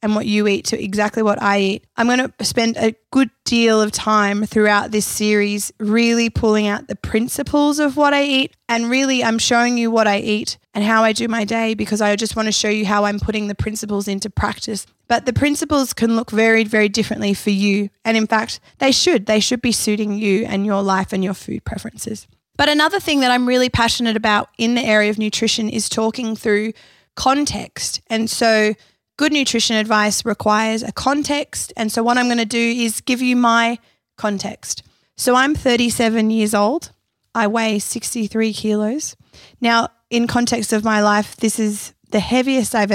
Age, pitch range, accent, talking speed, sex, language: 20-39, 210-235 Hz, Australian, 195 wpm, female, English